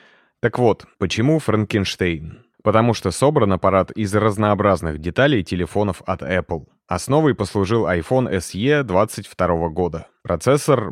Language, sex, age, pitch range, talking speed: Russian, male, 30-49, 90-115 Hz, 115 wpm